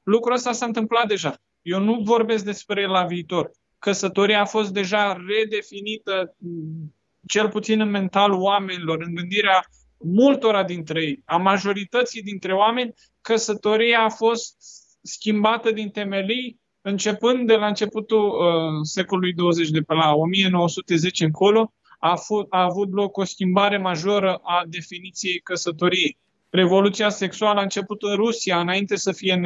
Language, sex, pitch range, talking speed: Romanian, male, 175-220 Hz, 140 wpm